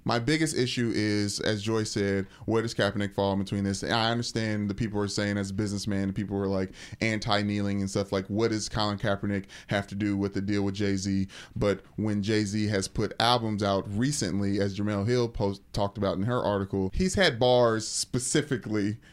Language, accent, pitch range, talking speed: English, American, 100-115 Hz, 205 wpm